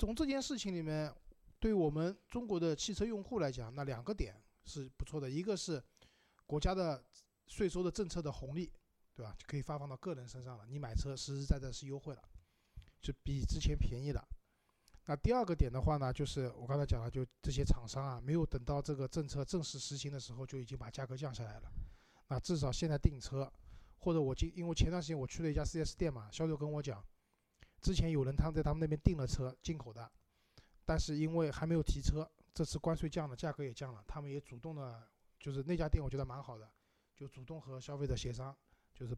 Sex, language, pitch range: male, Chinese, 125-160 Hz